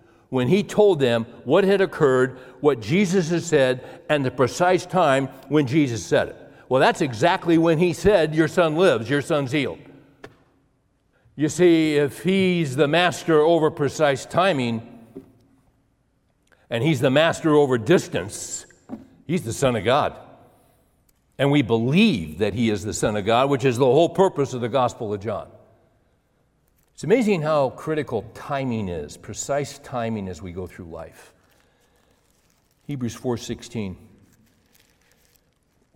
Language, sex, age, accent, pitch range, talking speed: English, male, 60-79, American, 120-155 Hz, 145 wpm